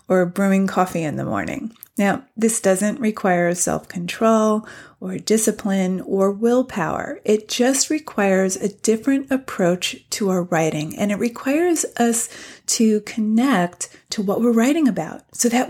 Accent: American